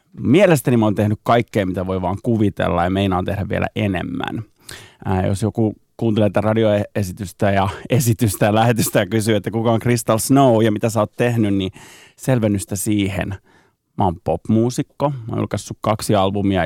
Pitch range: 95-115 Hz